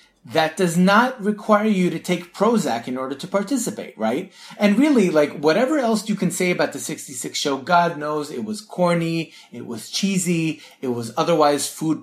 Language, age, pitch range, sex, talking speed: English, 30-49, 140-210 Hz, male, 185 wpm